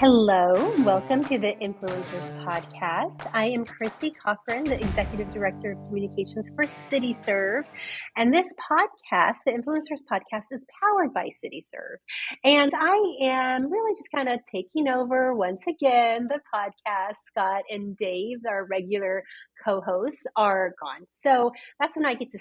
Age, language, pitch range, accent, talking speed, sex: 30-49, English, 185-250 Hz, American, 145 wpm, female